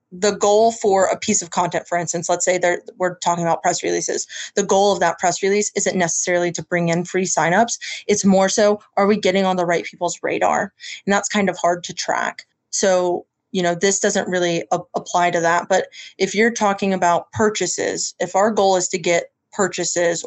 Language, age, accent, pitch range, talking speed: English, 20-39, American, 175-200 Hz, 205 wpm